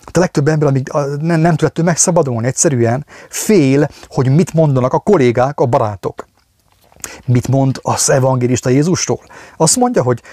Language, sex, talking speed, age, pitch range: English, male, 140 wpm, 30-49, 115-145 Hz